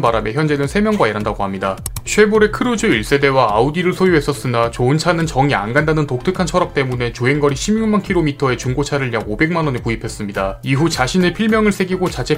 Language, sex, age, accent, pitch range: Korean, male, 30-49, native, 120-175 Hz